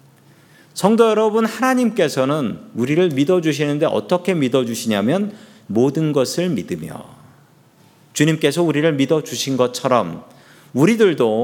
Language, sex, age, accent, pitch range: Korean, male, 40-59, native, 135-195 Hz